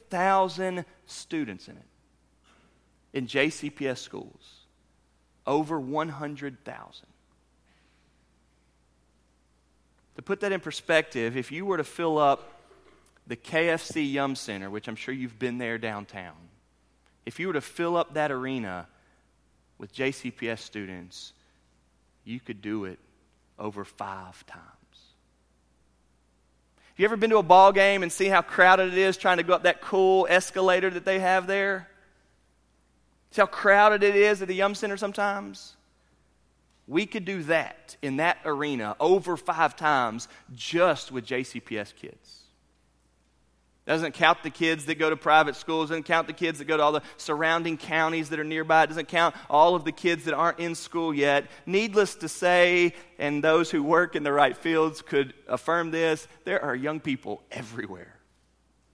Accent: American